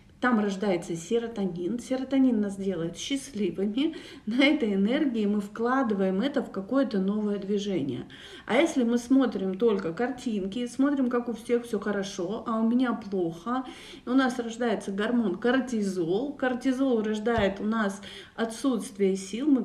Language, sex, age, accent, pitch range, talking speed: Russian, female, 40-59, native, 195-250 Hz, 135 wpm